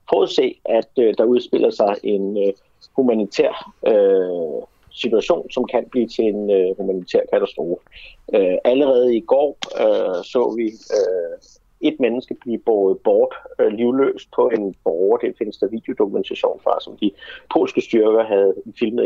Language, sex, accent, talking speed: Danish, male, native, 155 wpm